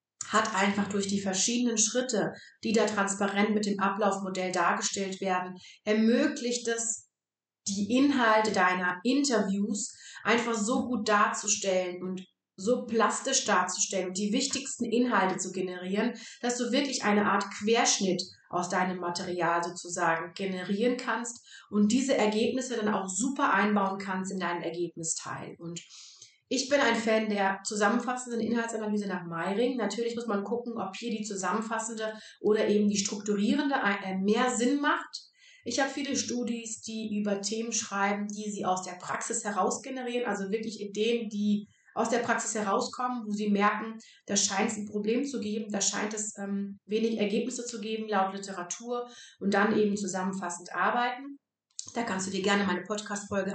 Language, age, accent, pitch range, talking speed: German, 30-49, German, 190-230 Hz, 155 wpm